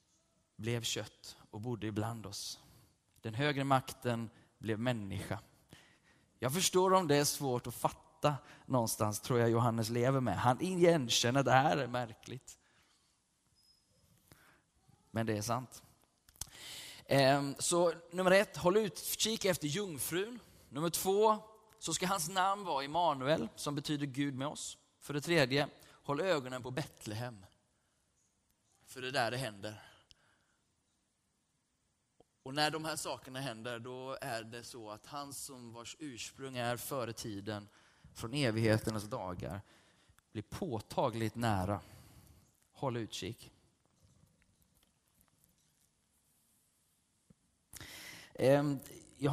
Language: Swedish